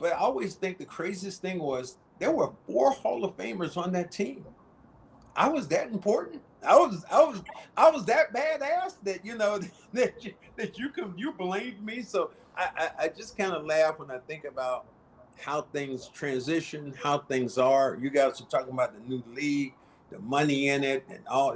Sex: male